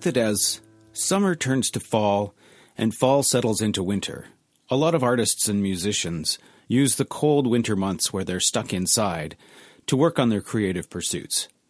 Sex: male